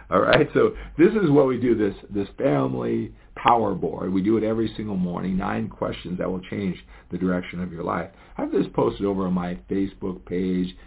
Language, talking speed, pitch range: English, 210 wpm, 90-105 Hz